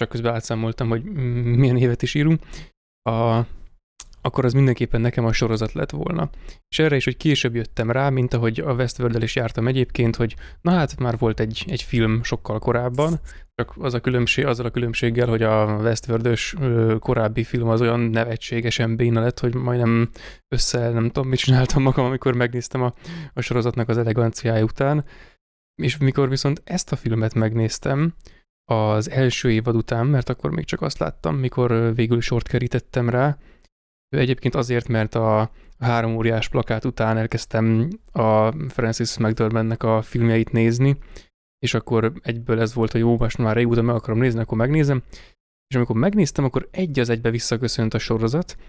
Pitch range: 115-130 Hz